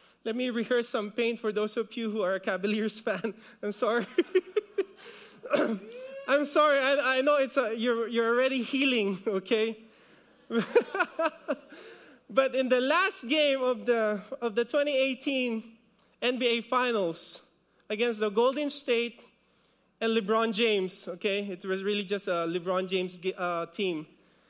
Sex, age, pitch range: male, 20-39, 205-255 Hz